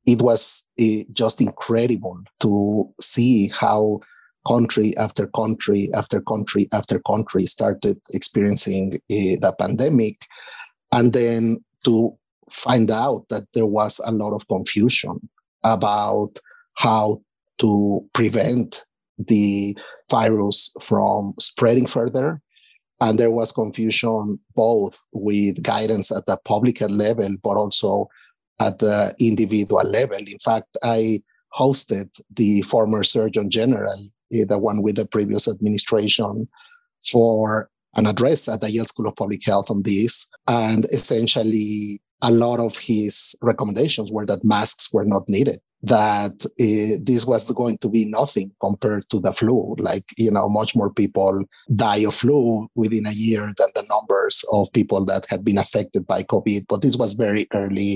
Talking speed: 140 wpm